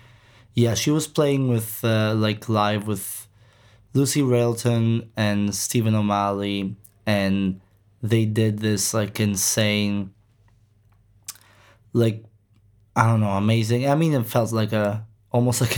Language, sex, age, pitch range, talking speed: English, male, 20-39, 105-115 Hz, 125 wpm